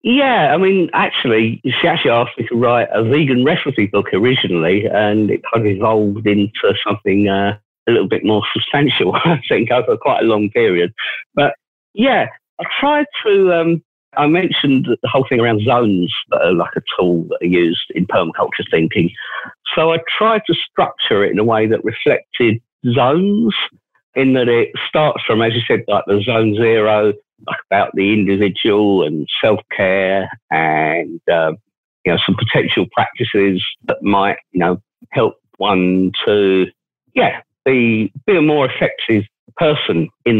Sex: male